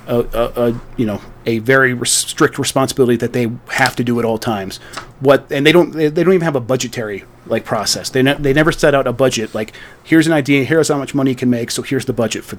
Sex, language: male, English